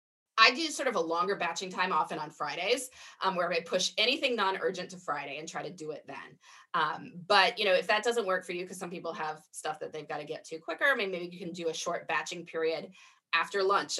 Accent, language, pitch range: American, English, 165-235 Hz